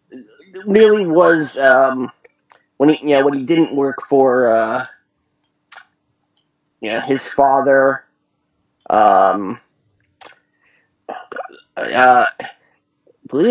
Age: 30-49